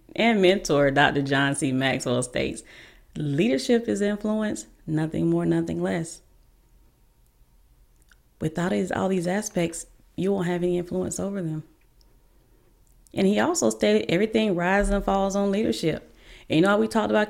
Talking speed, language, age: 140 wpm, English, 30-49